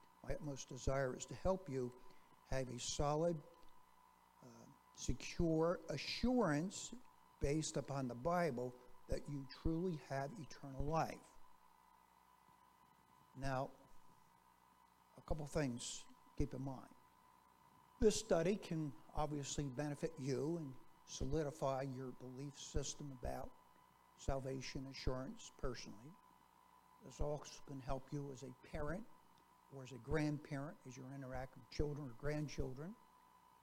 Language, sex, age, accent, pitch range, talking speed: English, male, 60-79, American, 135-165 Hz, 115 wpm